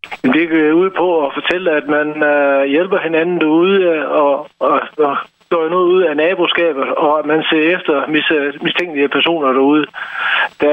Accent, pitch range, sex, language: native, 140-160 Hz, male, Danish